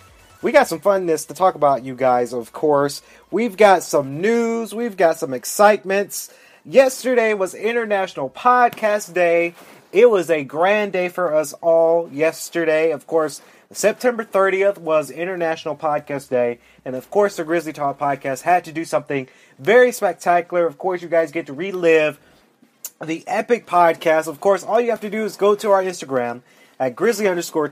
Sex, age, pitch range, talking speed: male, 30-49, 145-195 Hz, 170 wpm